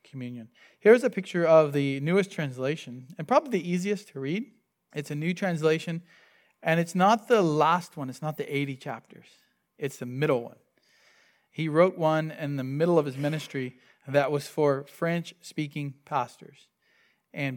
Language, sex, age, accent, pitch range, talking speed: English, male, 40-59, American, 135-165 Hz, 165 wpm